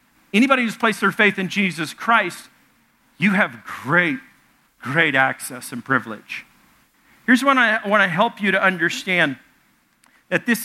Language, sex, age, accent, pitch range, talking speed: English, male, 50-69, American, 160-205 Hz, 150 wpm